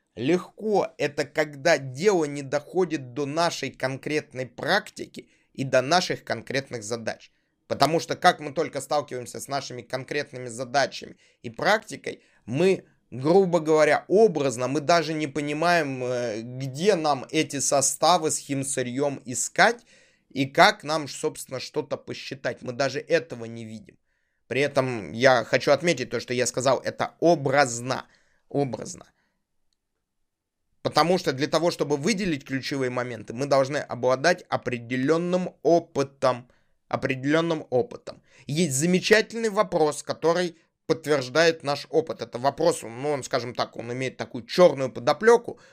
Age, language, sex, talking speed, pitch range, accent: 20-39, Russian, male, 130 wpm, 130-165 Hz, native